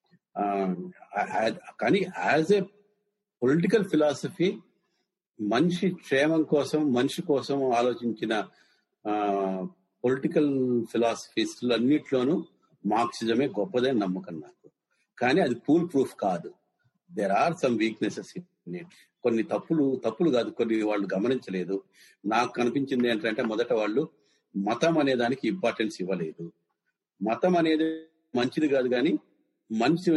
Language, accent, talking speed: Telugu, native, 100 wpm